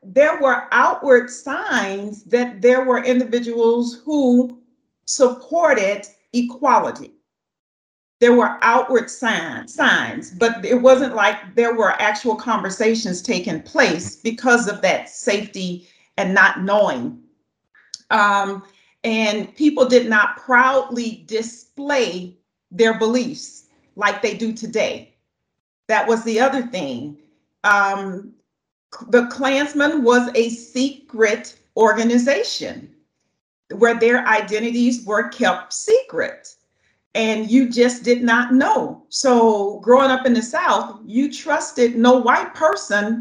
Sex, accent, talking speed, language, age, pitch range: female, American, 110 wpm, English, 40-59, 215-255 Hz